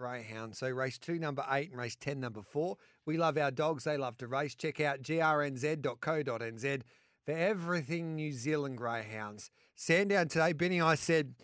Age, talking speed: 40-59, 170 wpm